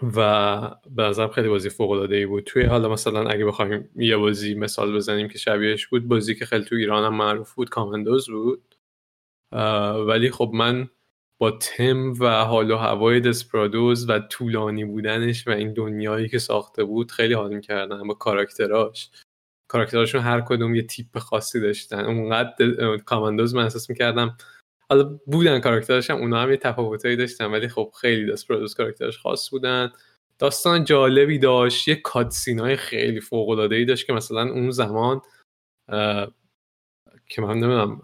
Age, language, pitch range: 20-39, Persian, 105-125 Hz